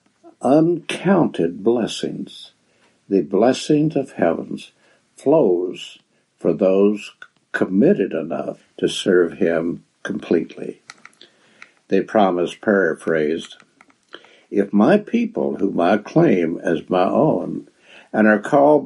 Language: English